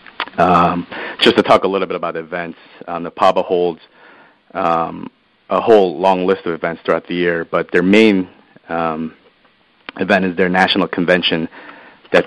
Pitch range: 85-95 Hz